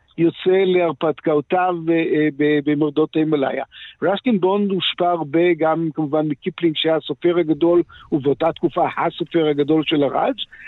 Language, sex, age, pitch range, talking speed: Hebrew, male, 60-79, 160-200 Hz, 110 wpm